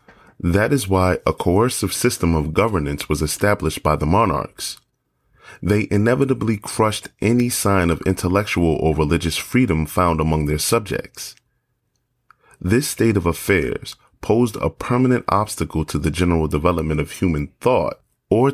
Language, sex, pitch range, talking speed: Urdu, male, 80-120 Hz, 140 wpm